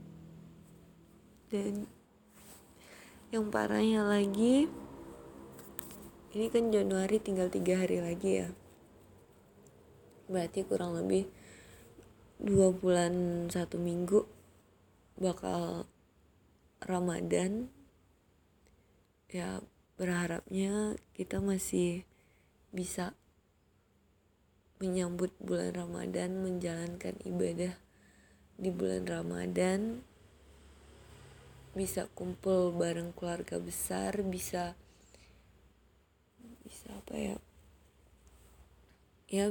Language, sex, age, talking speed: Indonesian, female, 20-39, 70 wpm